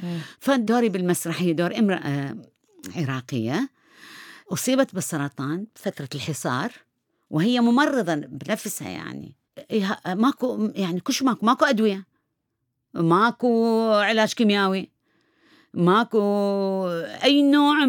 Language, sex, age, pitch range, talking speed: Arabic, female, 40-59, 160-235 Hz, 85 wpm